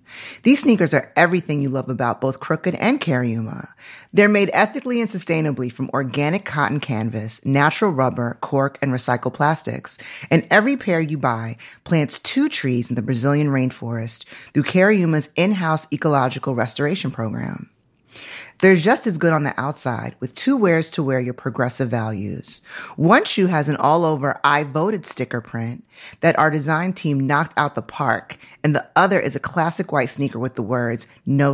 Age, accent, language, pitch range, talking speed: 30-49, American, English, 130-180 Hz, 170 wpm